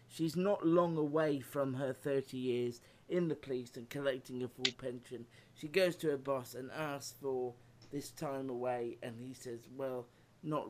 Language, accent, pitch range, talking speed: English, British, 120-140 Hz, 180 wpm